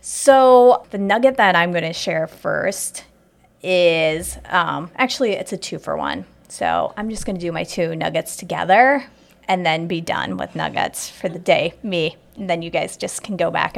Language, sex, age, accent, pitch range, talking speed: English, female, 30-49, American, 170-215 Hz, 185 wpm